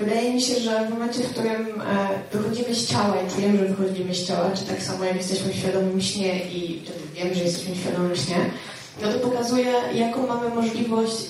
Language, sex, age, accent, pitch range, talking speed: Polish, female, 20-39, native, 190-225 Hz, 190 wpm